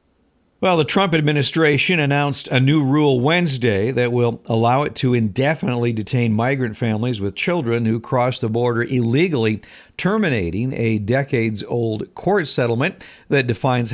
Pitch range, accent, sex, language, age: 110-135 Hz, American, male, Japanese, 50-69